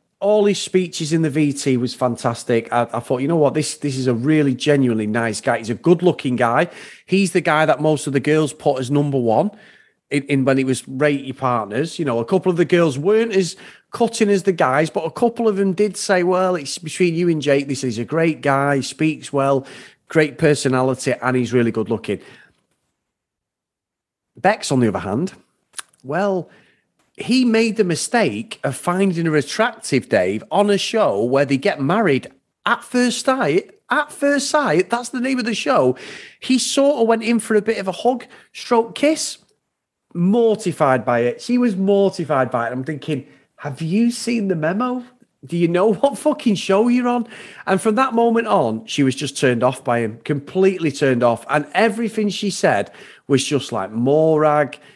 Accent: British